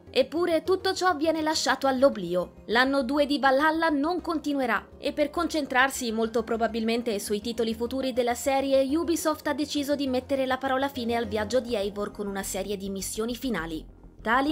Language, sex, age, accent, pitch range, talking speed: Italian, female, 20-39, native, 225-285 Hz, 170 wpm